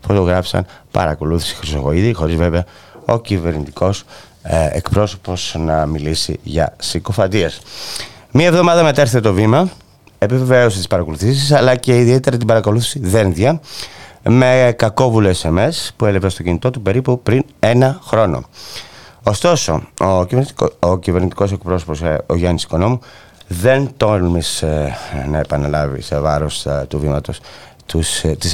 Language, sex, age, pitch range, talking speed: Greek, male, 30-49, 85-115 Hz, 115 wpm